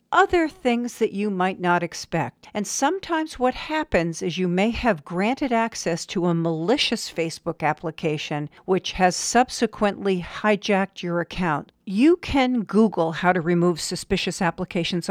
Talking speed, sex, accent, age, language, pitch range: 145 wpm, female, American, 50-69, English, 175-235 Hz